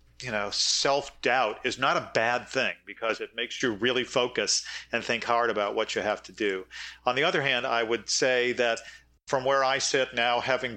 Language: English